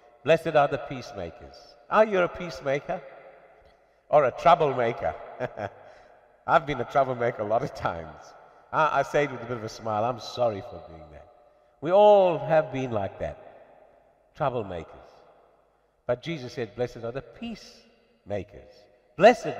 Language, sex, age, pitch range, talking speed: English, male, 60-79, 150-230 Hz, 150 wpm